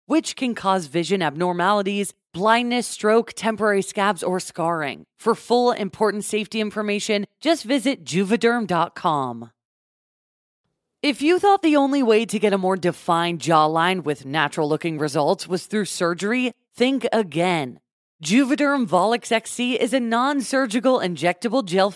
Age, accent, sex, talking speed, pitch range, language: 20-39, American, female, 130 wpm, 175-240 Hz, English